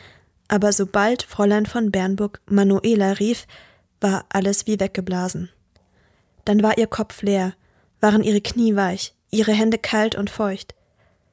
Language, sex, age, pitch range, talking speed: German, female, 20-39, 190-230 Hz, 130 wpm